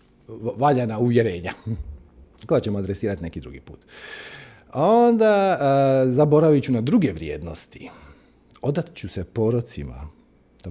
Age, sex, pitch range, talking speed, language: 40-59, male, 95-135 Hz, 110 wpm, Croatian